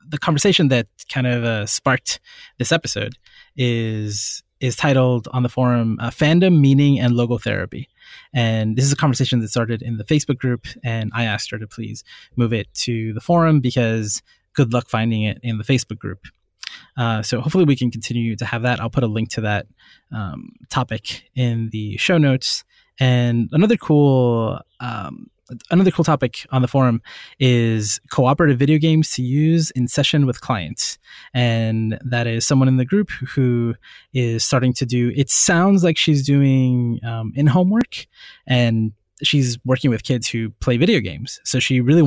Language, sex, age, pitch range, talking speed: English, male, 20-39, 115-140 Hz, 180 wpm